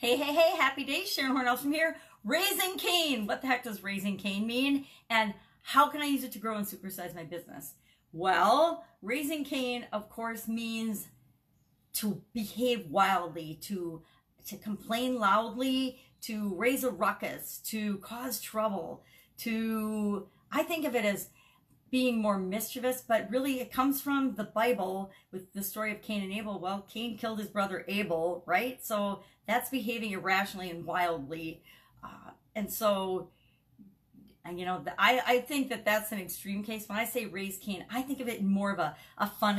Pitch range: 185-245 Hz